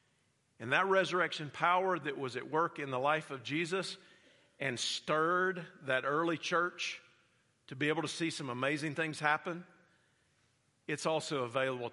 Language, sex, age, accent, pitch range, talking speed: English, male, 50-69, American, 130-170 Hz, 150 wpm